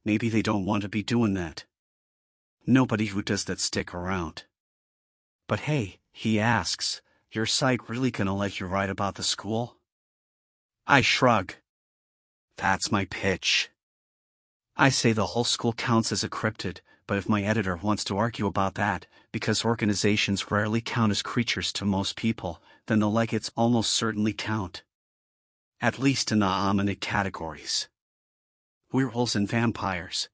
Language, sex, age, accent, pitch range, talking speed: English, male, 40-59, American, 100-115 Hz, 150 wpm